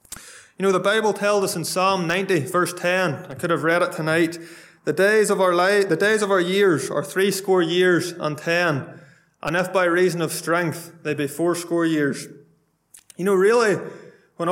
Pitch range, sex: 165-195 Hz, male